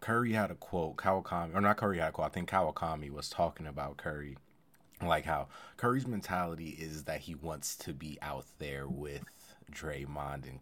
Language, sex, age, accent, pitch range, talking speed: English, male, 30-49, American, 75-100 Hz, 185 wpm